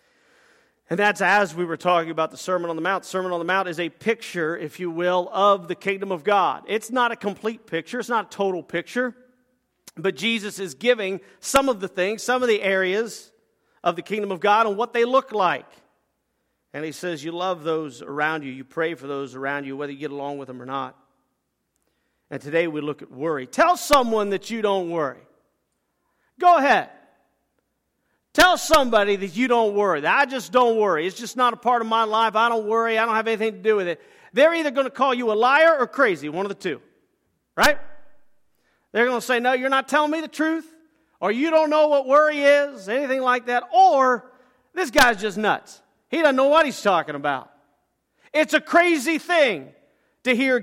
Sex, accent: male, American